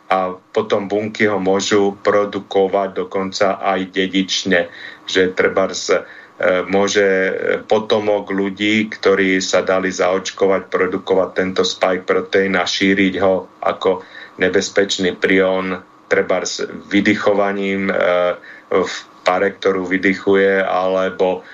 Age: 30-49